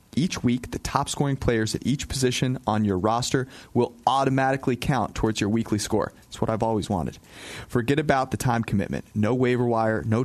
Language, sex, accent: English, male, American